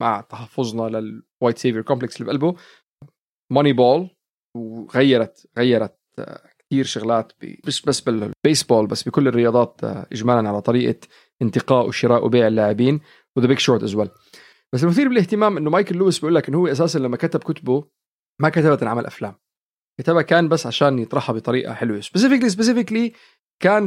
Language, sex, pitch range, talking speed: Arabic, male, 120-185 Hz, 145 wpm